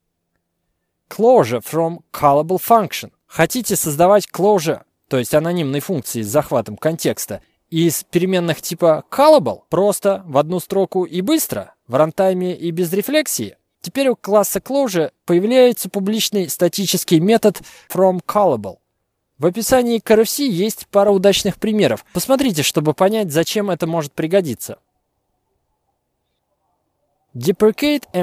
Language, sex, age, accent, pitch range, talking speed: Russian, male, 20-39, native, 150-210 Hz, 115 wpm